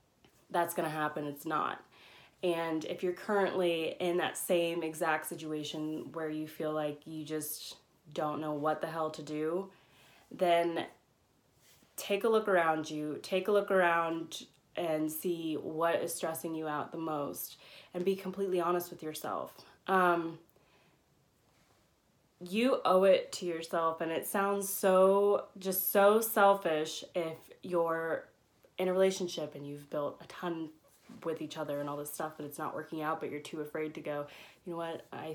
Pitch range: 155-180 Hz